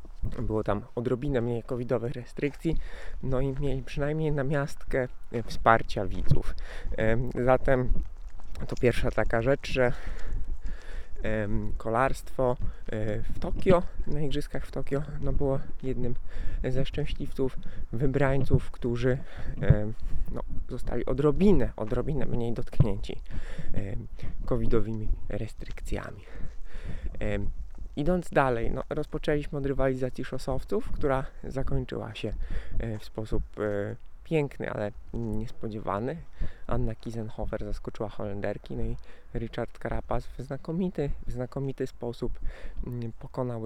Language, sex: Polish, male